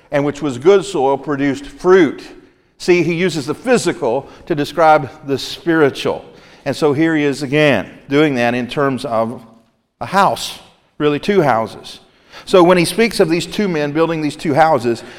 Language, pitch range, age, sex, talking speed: English, 135-175 Hz, 50-69, male, 175 wpm